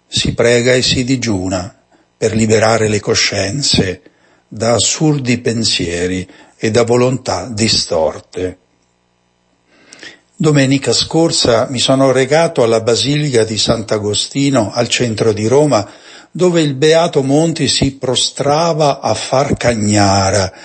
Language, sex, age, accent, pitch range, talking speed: Italian, male, 60-79, native, 105-140 Hz, 110 wpm